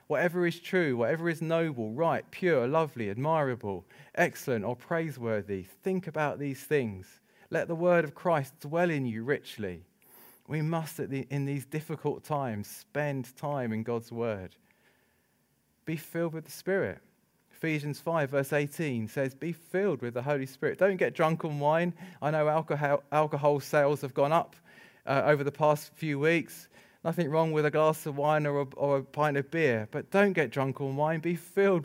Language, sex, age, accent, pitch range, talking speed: English, male, 30-49, British, 140-175 Hz, 175 wpm